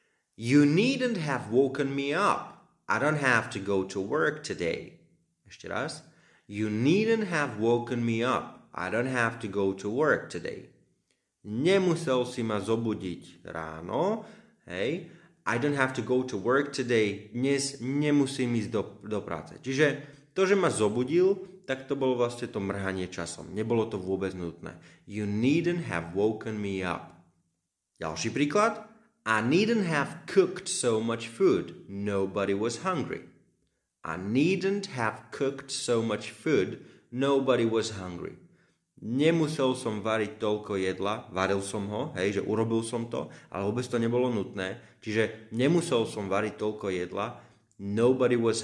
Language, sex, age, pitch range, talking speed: Slovak, male, 30-49, 100-135 Hz, 150 wpm